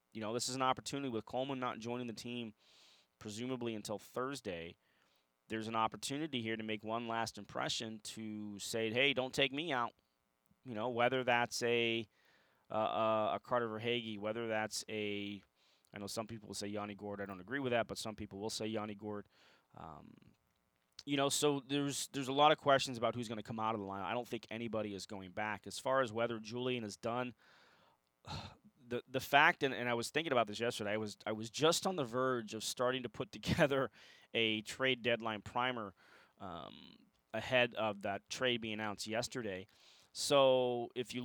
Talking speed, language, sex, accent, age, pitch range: 200 wpm, English, male, American, 30-49, 105-125 Hz